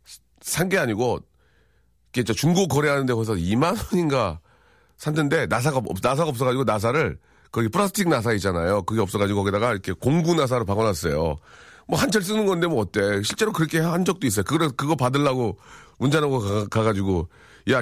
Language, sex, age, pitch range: Korean, male, 40-59, 110-155 Hz